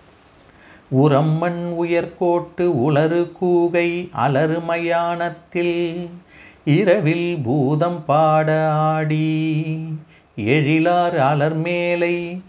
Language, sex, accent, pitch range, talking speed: Tamil, male, native, 120-170 Hz, 60 wpm